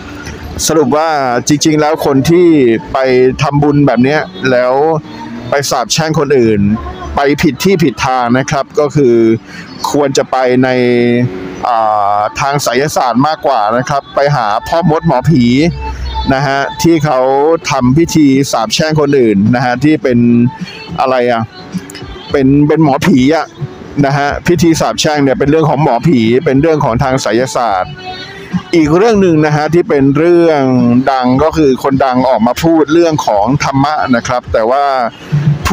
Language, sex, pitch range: Thai, male, 125-155 Hz